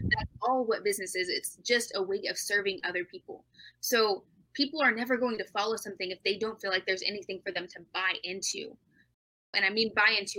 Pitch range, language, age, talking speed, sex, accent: 185-240 Hz, English, 20-39, 220 wpm, female, American